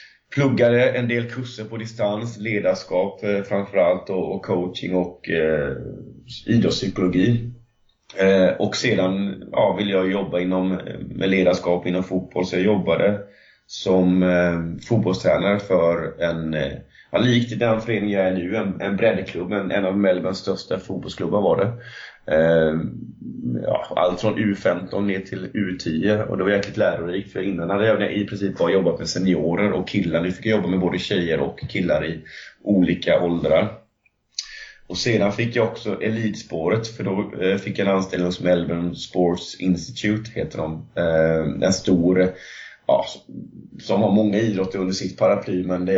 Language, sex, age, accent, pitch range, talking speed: Swedish, male, 30-49, native, 90-105 Hz, 155 wpm